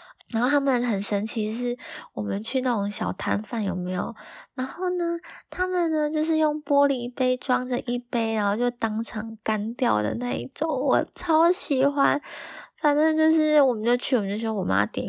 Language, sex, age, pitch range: Chinese, female, 20-39, 195-260 Hz